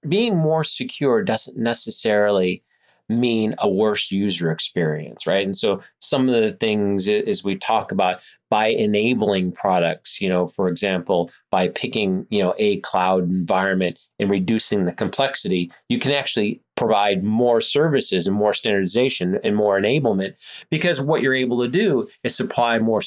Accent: American